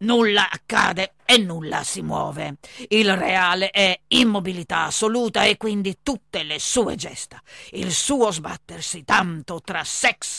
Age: 40-59